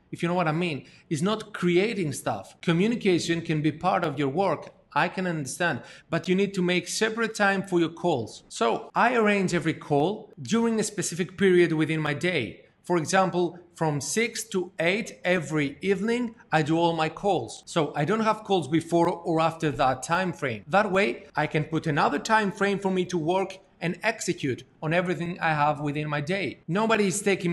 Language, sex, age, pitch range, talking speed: Greek, male, 40-59, 155-195 Hz, 195 wpm